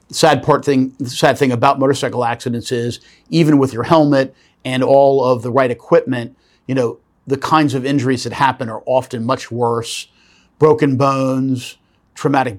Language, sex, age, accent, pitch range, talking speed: English, male, 50-69, American, 120-140 Hz, 165 wpm